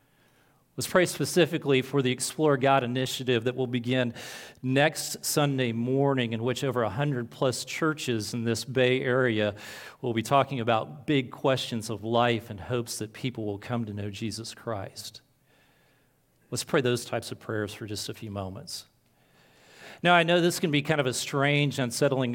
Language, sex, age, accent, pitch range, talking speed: English, male, 40-59, American, 115-140 Hz, 175 wpm